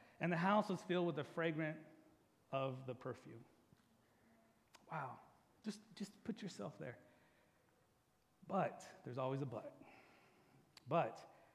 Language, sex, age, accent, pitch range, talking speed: English, male, 40-59, American, 155-235 Hz, 120 wpm